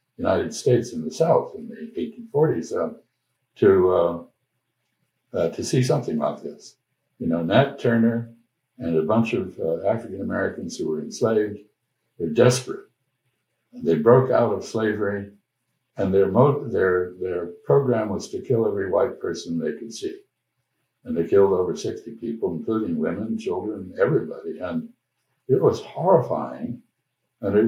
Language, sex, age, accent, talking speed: English, male, 60-79, American, 150 wpm